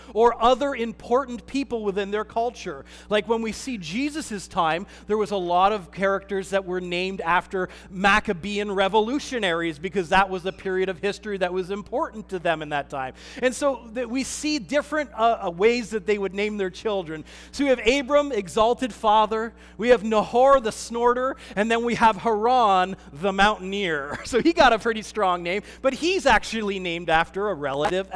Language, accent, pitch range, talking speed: English, American, 170-225 Hz, 180 wpm